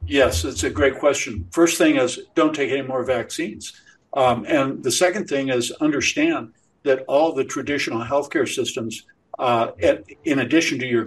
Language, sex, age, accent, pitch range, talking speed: English, male, 60-79, American, 120-170 Hz, 180 wpm